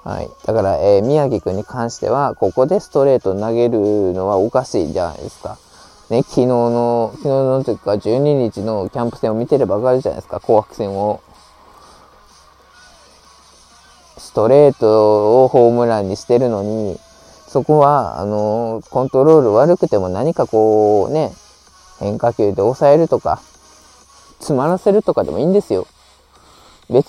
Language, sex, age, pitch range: Japanese, male, 20-39, 105-160 Hz